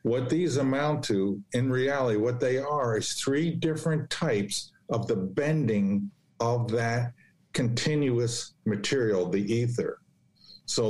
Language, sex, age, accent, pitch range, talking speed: English, male, 50-69, American, 110-130 Hz, 125 wpm